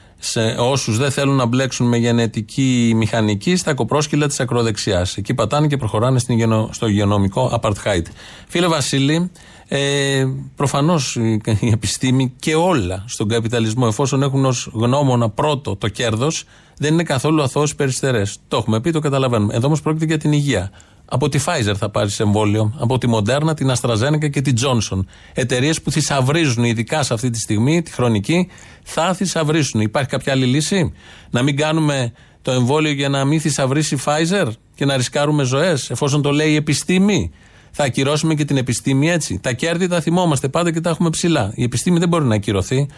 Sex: male